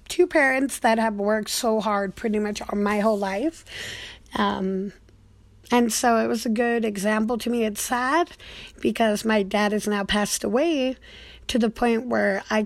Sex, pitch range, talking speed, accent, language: female, 210-250 Hz, 175 wpm, American, English